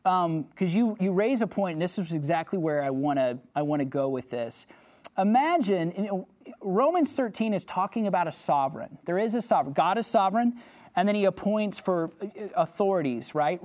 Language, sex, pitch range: English, male, 170-235 Hz